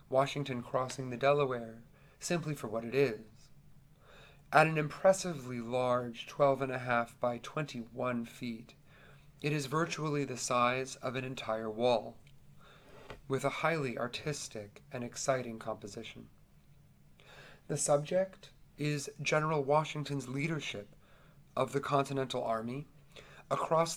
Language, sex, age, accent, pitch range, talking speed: English, male, 30-49, American, 120-145 Hz, 120 wpm